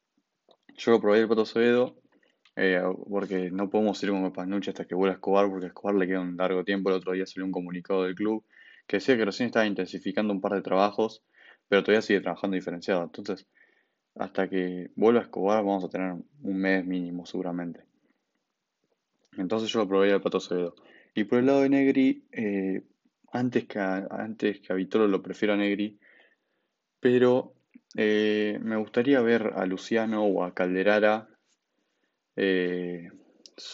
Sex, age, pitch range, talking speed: male, 20-39, 95-110 Hz, 175 wpm